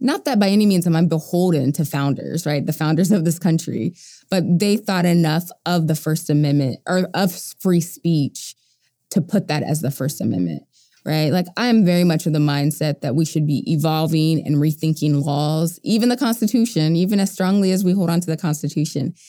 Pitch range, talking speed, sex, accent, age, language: 150-185 Hz, 200 wpm, female, American, 20-39, English